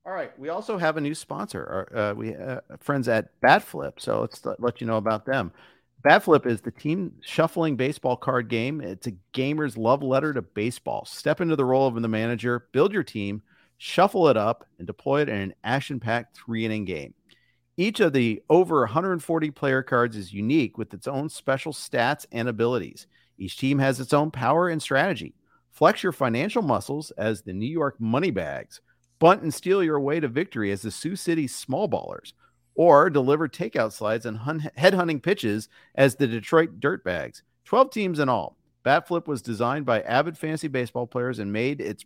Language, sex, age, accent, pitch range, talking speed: English, male, 50-69, American, 115-155 Hz, 185 wpm